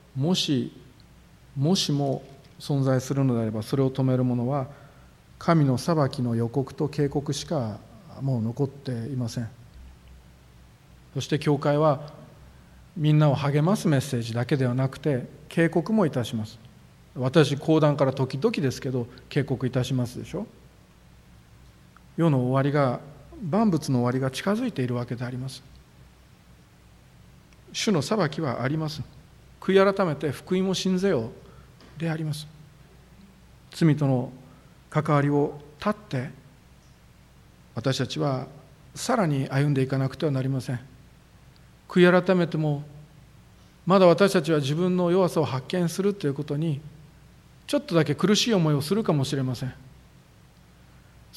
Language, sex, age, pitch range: Japanese, male, 40-59, 130-165 Hz